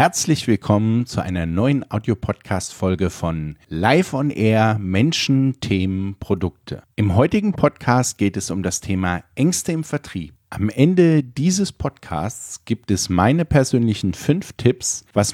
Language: German